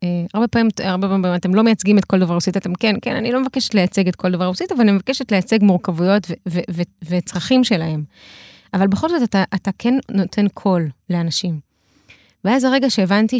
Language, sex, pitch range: Hebrew, female, 175-205 Hz